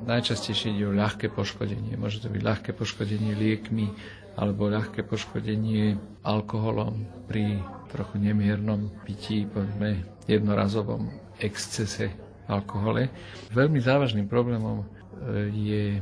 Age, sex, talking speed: 50-69, male, 100 wpm